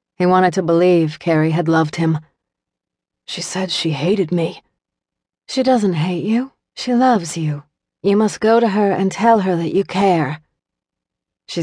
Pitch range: 155-180 Hz